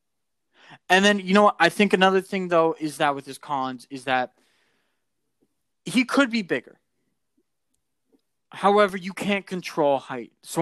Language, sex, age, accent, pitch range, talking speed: English, male, 20-39, American, 135-185 Hz, 155 wpm